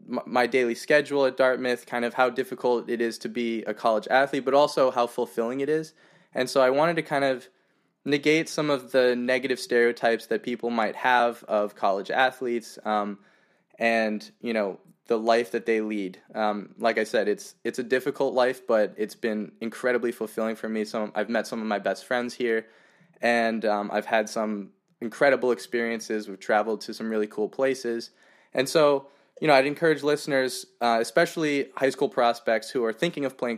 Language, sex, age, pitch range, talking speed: English, male, 20-39, 110-135 Hz, 190 wpm